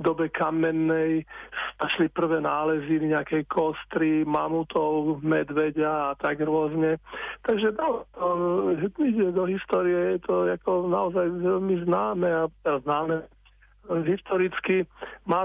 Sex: male